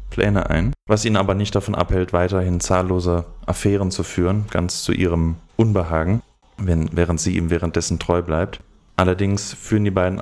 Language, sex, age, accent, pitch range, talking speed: German, male, 30-49, German, 90-110 Hz, 160 wpm